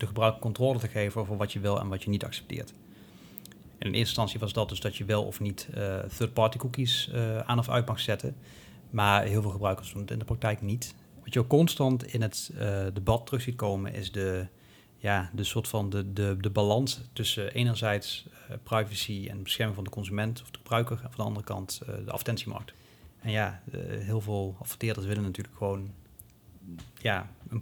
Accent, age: Dutch, 40-59